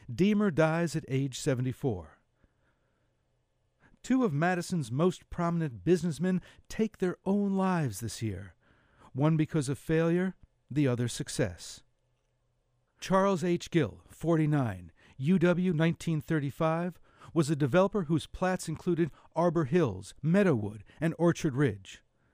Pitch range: 130-170 Hz